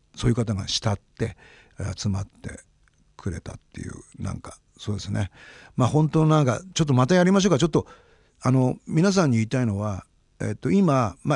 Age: 50-69